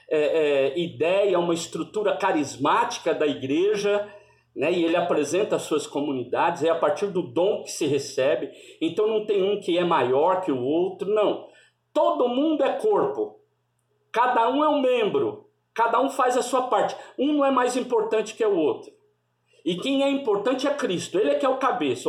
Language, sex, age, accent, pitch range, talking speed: Portuguese, male, 50-69, Brazilian, 200-320 Hz, 185 wpm